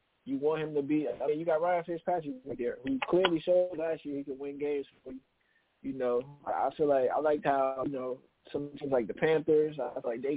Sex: male